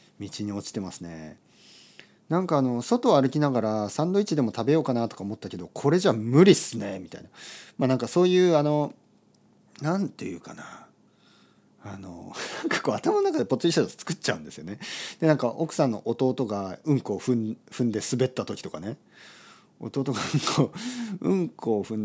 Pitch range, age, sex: 110-170 Hz, 40-59, male